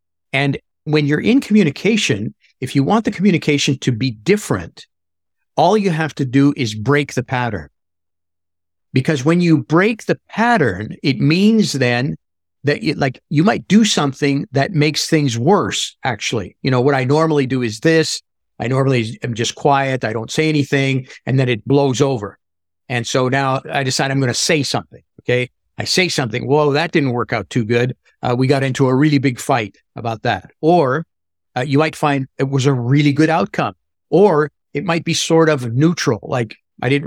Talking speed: 190 wpm